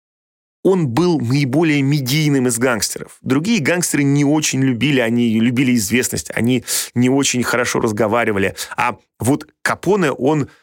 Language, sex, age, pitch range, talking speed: Russian, male, 30-49, 120-155 Hz, 130 wpm